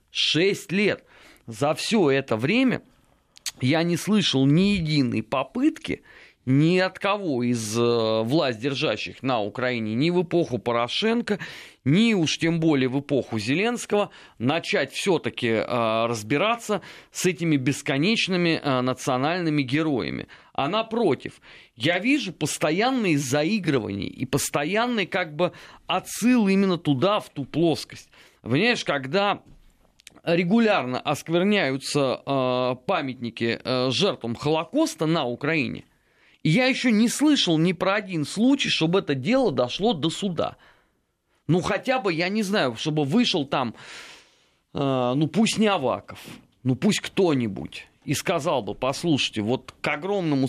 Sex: male